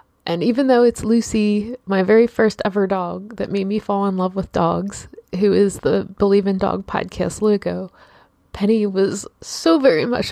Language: English